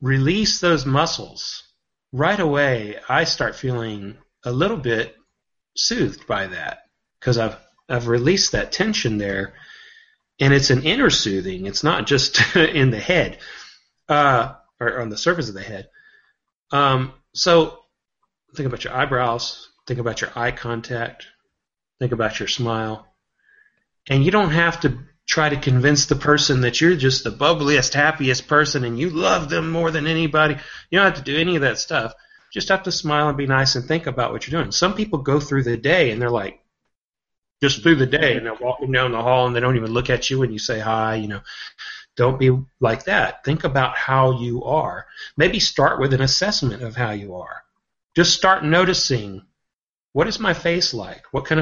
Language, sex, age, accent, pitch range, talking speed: English, male, 30-49, American, 120-160 Hz, 185 wpm